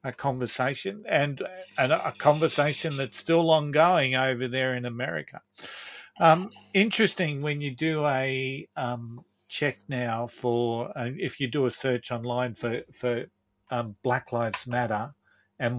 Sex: male